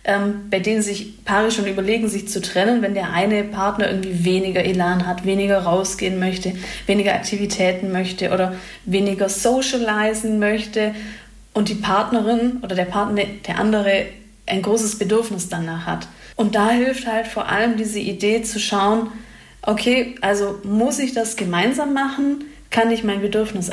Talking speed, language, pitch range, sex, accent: 155 wpm, German, 195-230 Hz, female, German